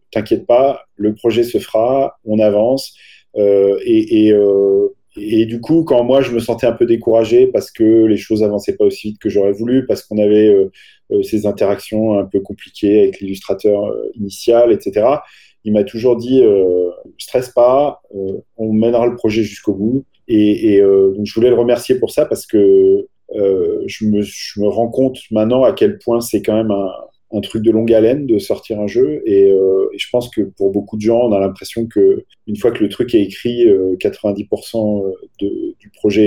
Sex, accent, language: male, French, French